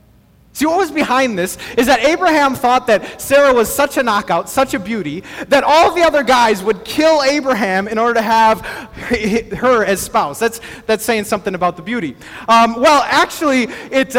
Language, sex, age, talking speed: English, male, 30-49, 185 wpm